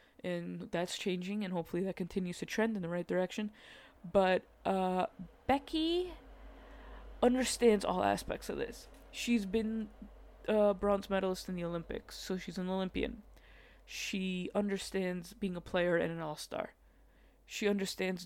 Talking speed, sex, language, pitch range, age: 140 wpm, female, English, 175-205 Hz, 20-39